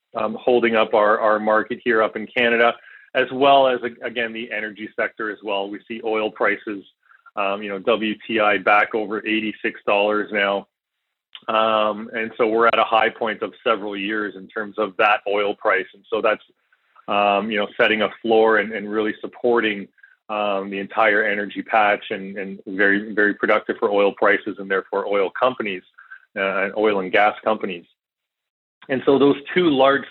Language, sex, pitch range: English, male, 105-120 Hz